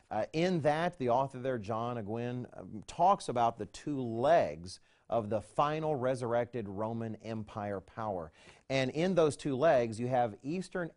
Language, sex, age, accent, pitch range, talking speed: English, male, 40-59, American, 110-155 Hz, 160 wpm